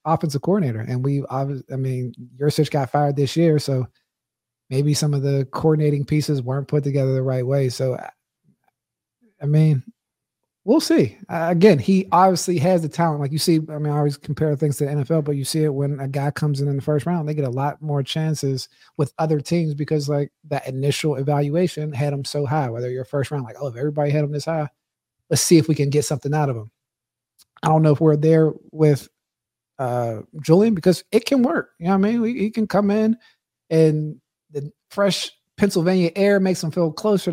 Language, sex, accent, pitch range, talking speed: English, male, American, 140-170 Hz, 215 wpm